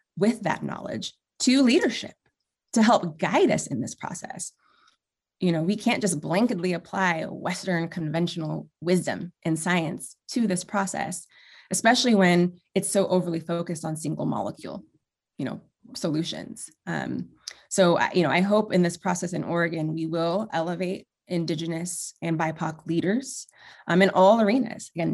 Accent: American